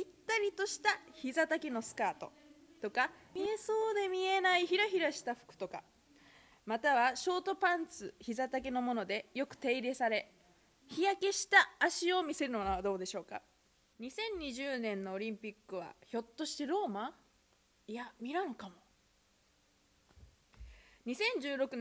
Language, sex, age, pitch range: Japanese, female, 20-39, 210-340 Hz